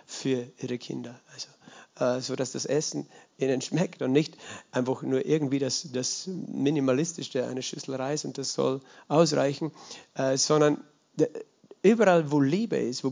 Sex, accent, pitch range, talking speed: male, German, 140-175 Hz, 155 wpm